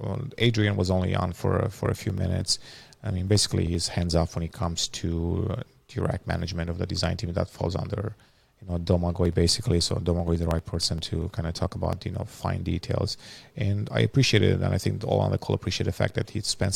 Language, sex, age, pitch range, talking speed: English, male, 30-49, 90-115 Hz, 235 wpm